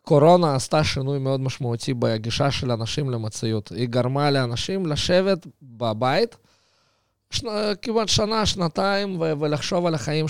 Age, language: 20-39, Hebrew